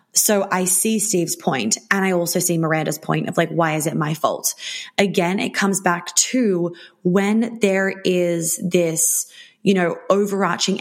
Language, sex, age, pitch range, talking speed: English, female, 20-39, 170-200 Hz, 165 wpm